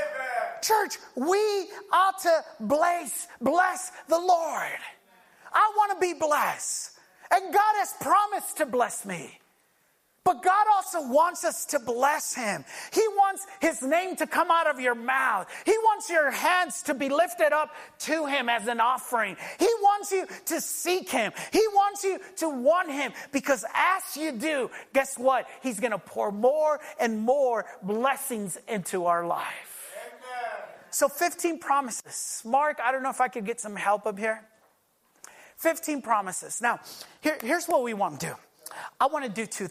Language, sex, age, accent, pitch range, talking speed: English, male, 30-49, American, 220-335 Hz, 165 wpm